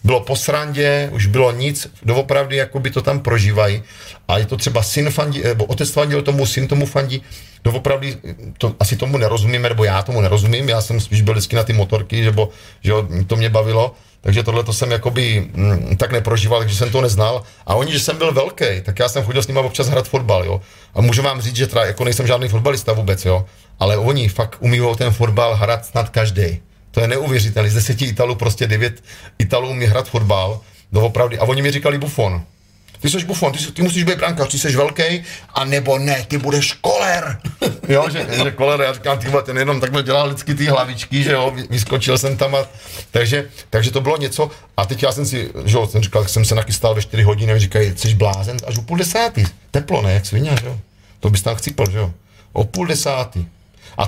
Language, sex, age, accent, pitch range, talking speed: Czech, male, 40-59, native, 105-135 Hz, 205 wpm